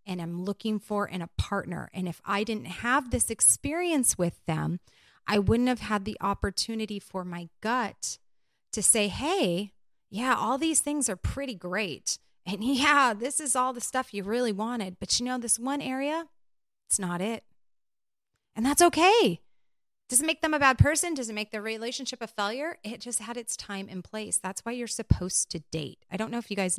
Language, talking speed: English, 195 wpm